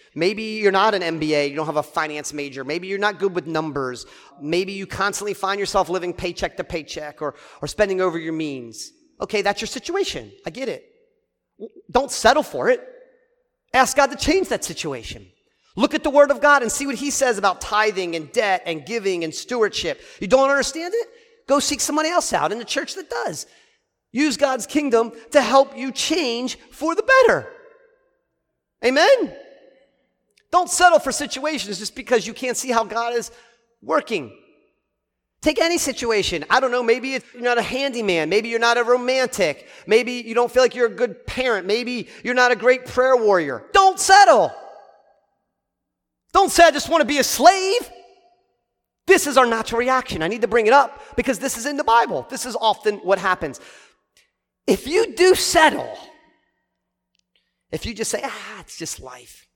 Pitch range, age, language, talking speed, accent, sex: 200-310 Hz, 40-59, English, 185 wpm, American, male